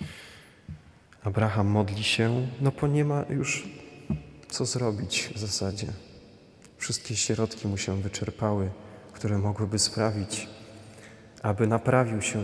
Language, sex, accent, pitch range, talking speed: Polish, male, native, 105-120 Hz, 110 wpm